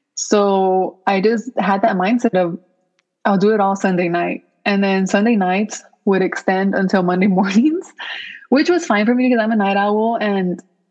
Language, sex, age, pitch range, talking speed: English, female, 20-39, 190-225 Hz, 180 wpm